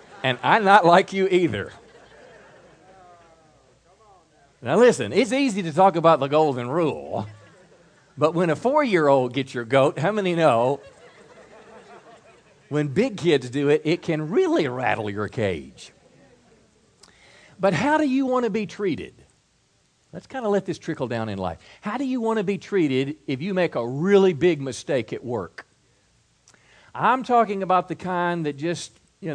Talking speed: 160 wpm